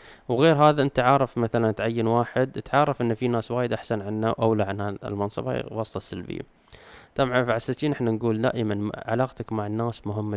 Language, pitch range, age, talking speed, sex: Arabic, 105-125 Hz, 20-39, 175 wpm, male